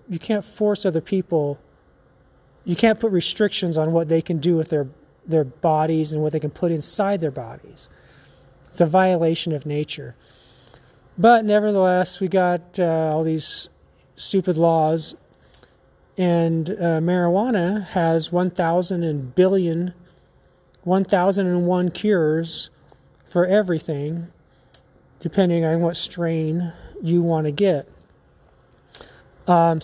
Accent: American